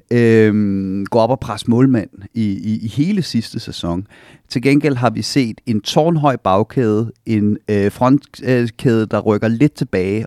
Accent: native